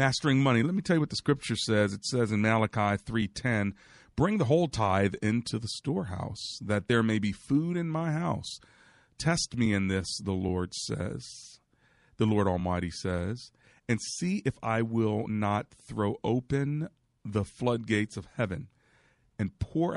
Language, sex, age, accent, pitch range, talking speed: English, male, 40-59, American, 100-130 Hz, 165 wpm